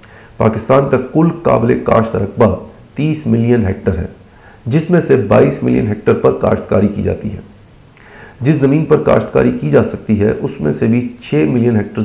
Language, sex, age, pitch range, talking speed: Urdu, male, 40-59, 105-120 Hz, 180 wpm